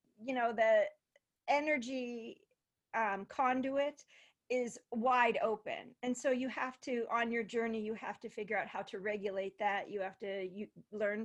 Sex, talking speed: female, 165 wpm